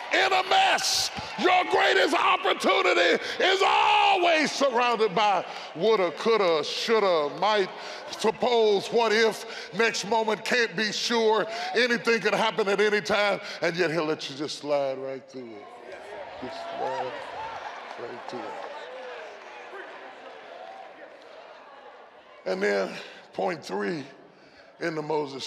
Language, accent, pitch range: English, American, 170-240 Hz